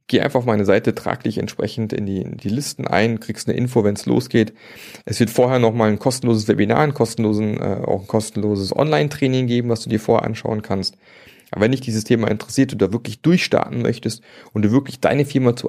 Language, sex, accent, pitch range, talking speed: German, male, German, 95-120 Hz, 220 wpm